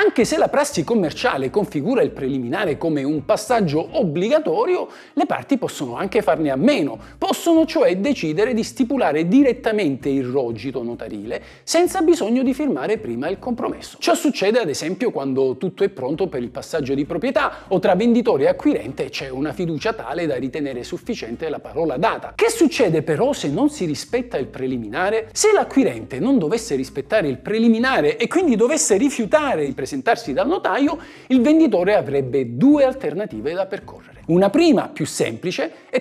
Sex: male